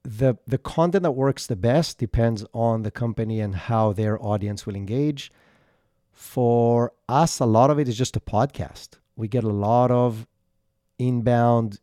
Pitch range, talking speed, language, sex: 105-125 Hz, 165 wpm, English, male